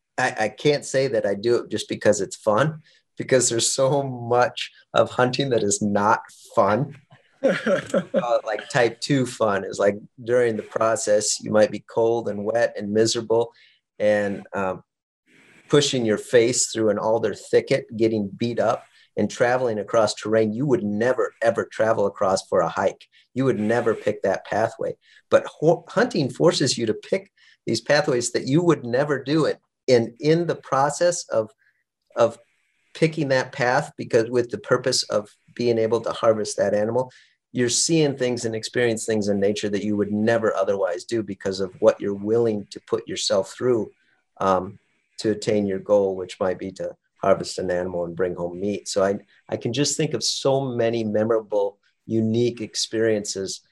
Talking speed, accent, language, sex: 175 wpm, American, English, male